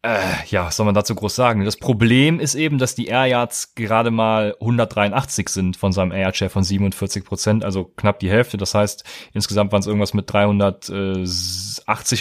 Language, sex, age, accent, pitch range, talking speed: German, male, 30-49, German, 105-130 Hz, 180 wpm